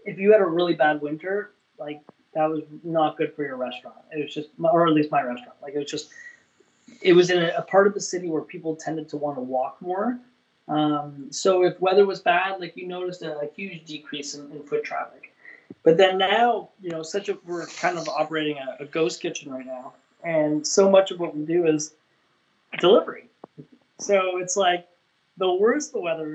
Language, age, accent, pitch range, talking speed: English, 20-39, American, 155-195 Hz, 215 wpm